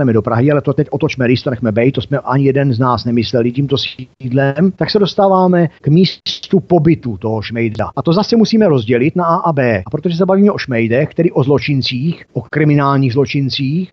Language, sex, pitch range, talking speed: Czech, male, 120-170 Hz, 205 wpm